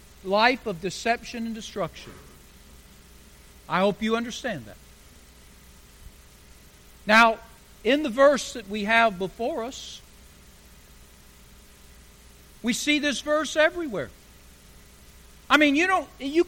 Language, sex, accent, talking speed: English, male, American, 100 wpm